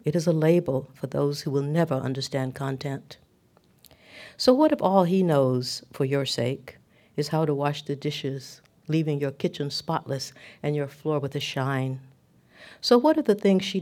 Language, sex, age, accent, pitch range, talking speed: English, female, 60-79, American, 130-160 Hz, 180 wpm